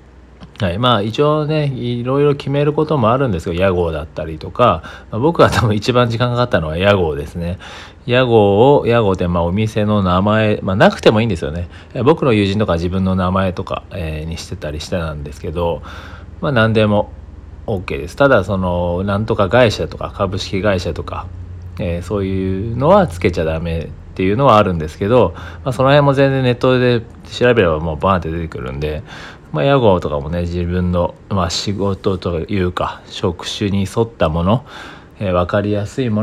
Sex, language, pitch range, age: male, Japanese, 85-110 Hz, 40-59